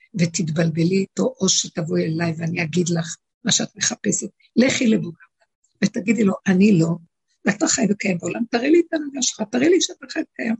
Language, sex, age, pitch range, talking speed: Hebrew, female, 60-79, 170-235 Hz, 175 wpm